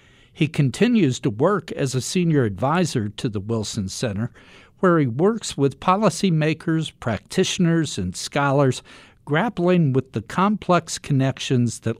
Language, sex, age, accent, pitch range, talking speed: English, male, 60-79, American, 105-135 Hz, 130 wpm